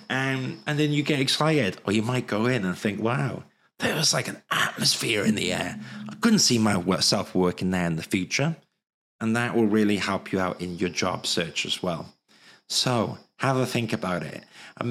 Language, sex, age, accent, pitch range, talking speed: English, male, 30-49, British, 110-140 Hz, 205 wpm